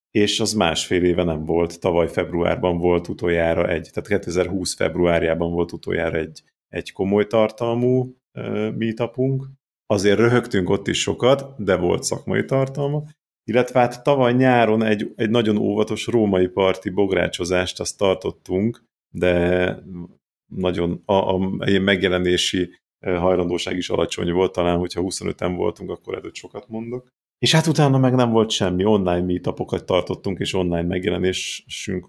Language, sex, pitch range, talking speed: Hungarian, male, 90-110 Hz, 135 wpm